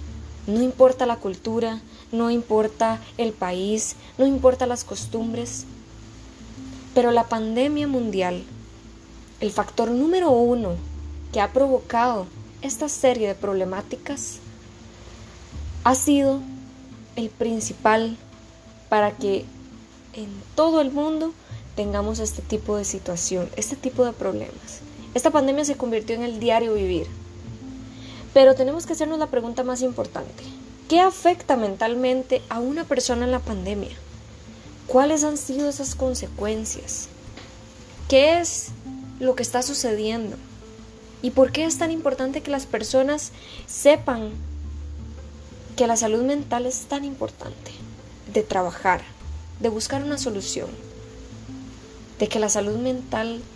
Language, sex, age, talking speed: Spanish, female, 20-39, 125 wpm